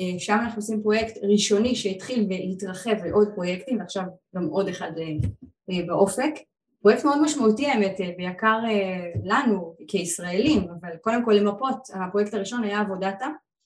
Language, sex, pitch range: Hebrew, female, 185-220 Hz